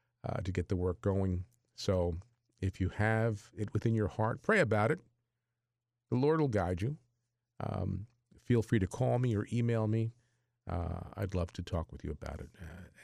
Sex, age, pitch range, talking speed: male, 50-69, 95-120 Hz, 190 wpm